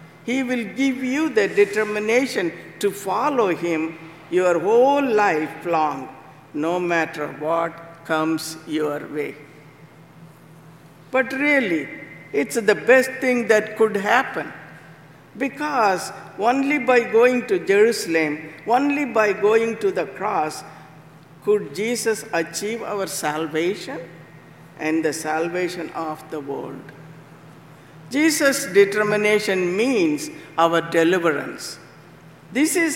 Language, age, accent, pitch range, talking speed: English, 60-79, Indian, 160-210 Hz, 105 wpm